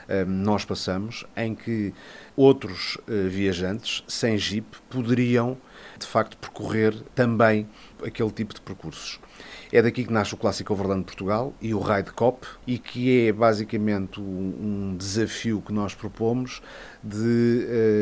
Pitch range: 95-120 Hz